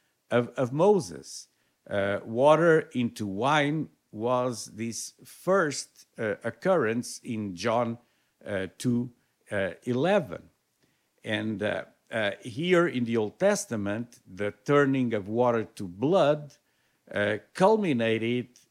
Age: 50-69